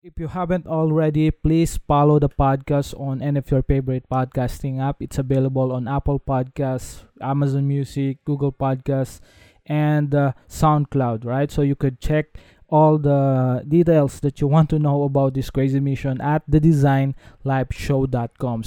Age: 20-39